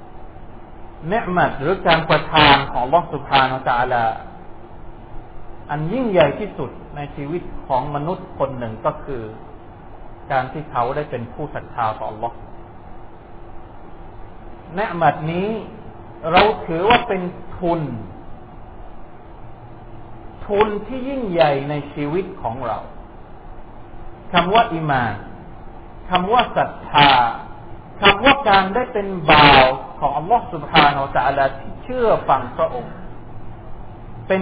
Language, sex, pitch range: Thai, male, 115-170 Hz